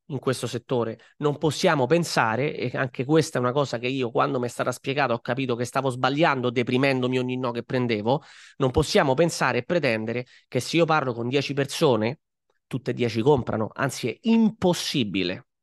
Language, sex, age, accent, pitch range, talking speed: Italian, male, 30-49, native, 125-165 Hz, 180 wpm